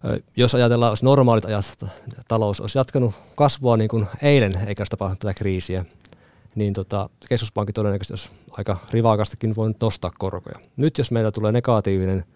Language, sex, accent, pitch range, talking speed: Finnish, male, native, 100-120 Hz, 165 wpm